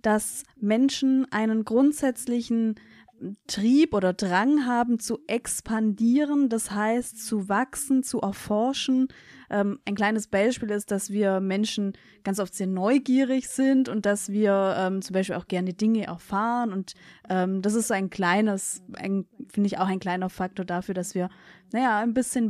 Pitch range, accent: 195-230 Hz, German